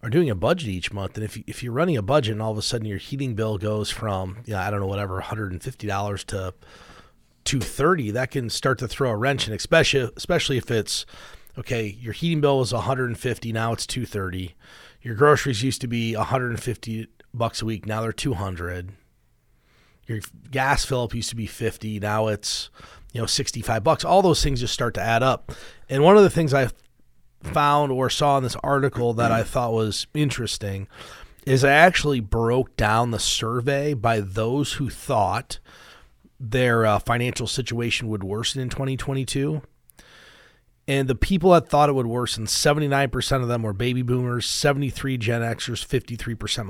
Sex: male